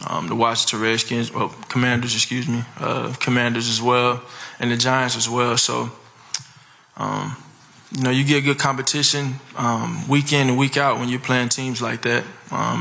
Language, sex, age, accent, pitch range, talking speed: English, male, 20-39, American, 115-130 Hz, 180 wpm